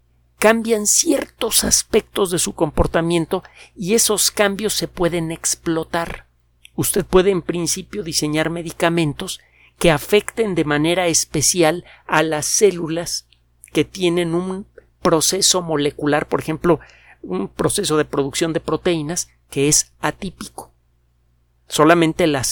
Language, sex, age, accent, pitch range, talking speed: Spanish, male, 50-69, Mexican, 140-180 Hz, 115 wpm